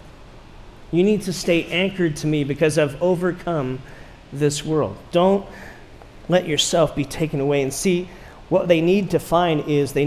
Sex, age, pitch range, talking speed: male, 40-59, 130-170 Hz, 160 wpm